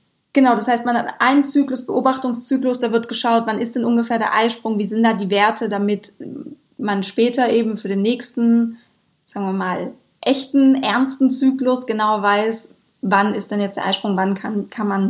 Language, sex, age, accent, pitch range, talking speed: German, female, 20-39, German, 205-245 Hz, 185 wpm